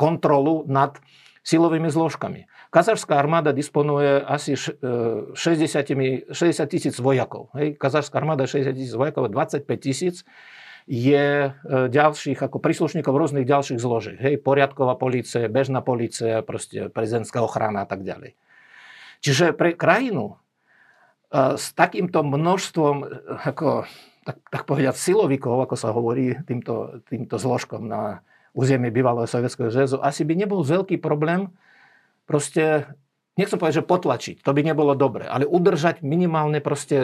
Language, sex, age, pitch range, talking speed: Slovak, male, 50-69, 135-160 Hz, 120 wpm